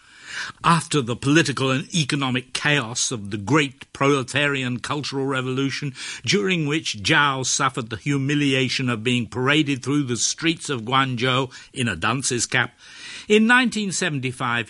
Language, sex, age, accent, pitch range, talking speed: English, male, 60-79, British, 120-170 Hz, 130 wpm